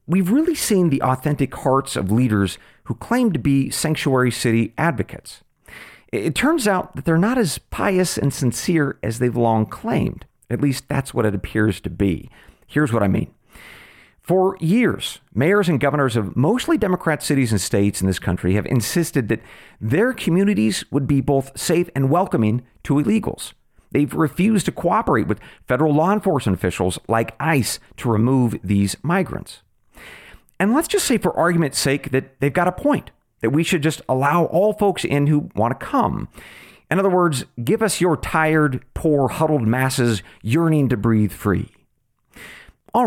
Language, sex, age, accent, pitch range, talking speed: English, male, 40-59, American, 120-180 Hz, 170 wpm